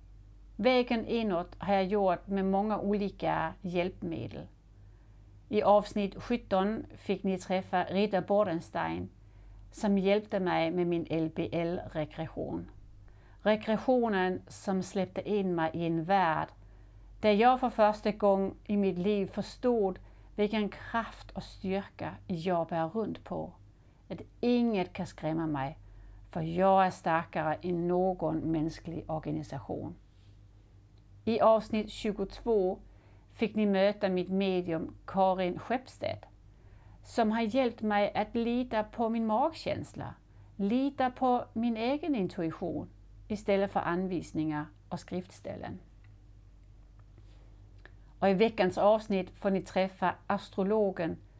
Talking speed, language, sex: 115 wpm, Swedish, female